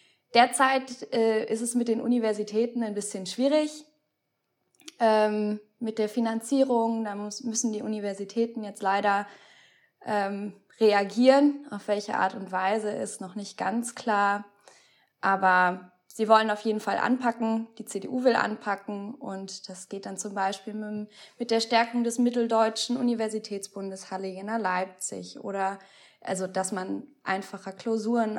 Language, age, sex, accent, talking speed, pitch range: German, 20-39, female, German, 140 wpm, 195-225 Hz